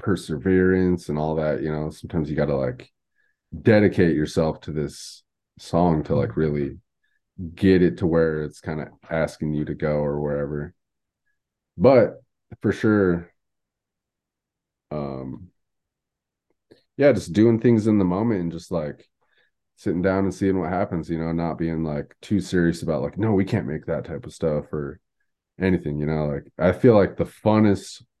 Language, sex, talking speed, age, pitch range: English, male, 165 wpm, 30-49, 80-100 Hz